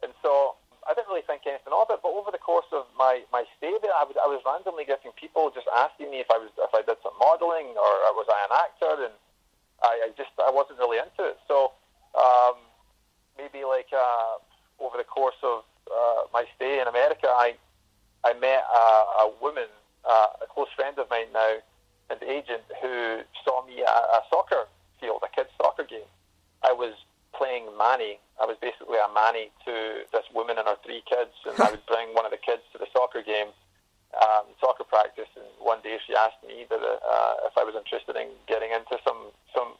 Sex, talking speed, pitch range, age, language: male, 210 wpm, 110-140 Hz, 30-49, English